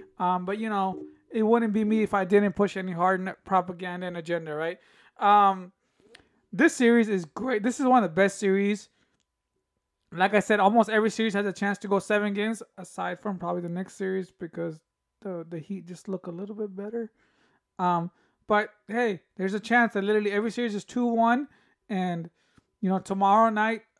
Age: 20-39